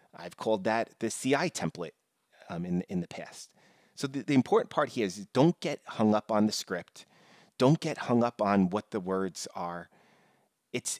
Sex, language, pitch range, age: male, English, 95-130 Hz, 30-49